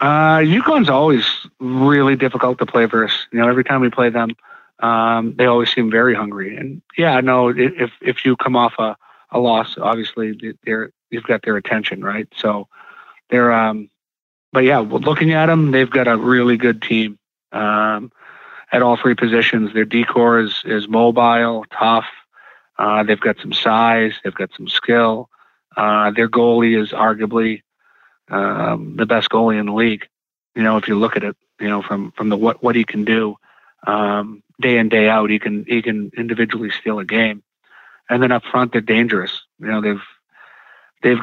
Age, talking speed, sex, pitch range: 40-59, 185 wpm, male, 105-120 Hz